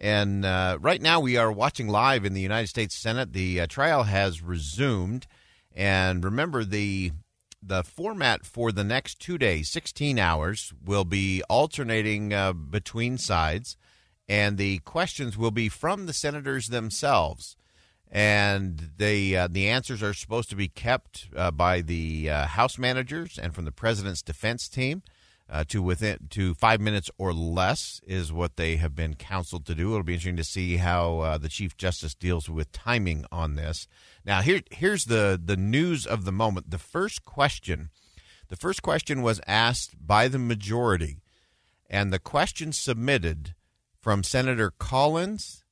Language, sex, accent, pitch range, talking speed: English, male, American, 90-120 Hz, 165 wpm